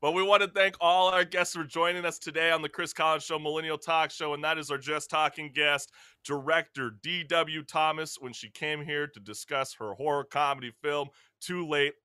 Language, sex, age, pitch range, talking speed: English, male, 30-49, 125-165 Hz, 210 wpm